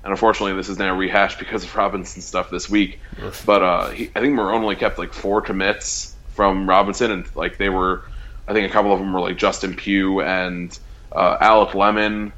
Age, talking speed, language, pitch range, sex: 20-39, 205 wpm, English, 95-105 Hz, male